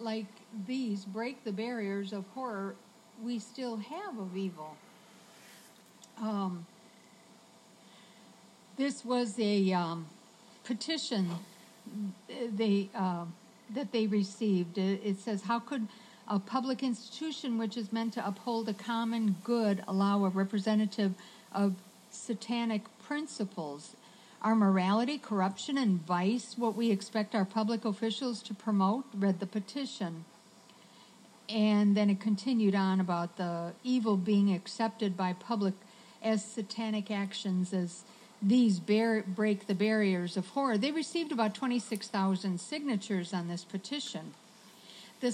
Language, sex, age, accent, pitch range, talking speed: English, female, 60-79, American, 195-230 Hz, 120 wpm